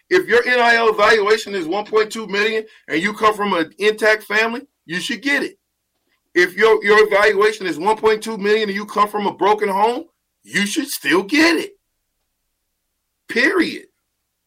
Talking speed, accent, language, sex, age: 160 wpm, American, English, male, 40-59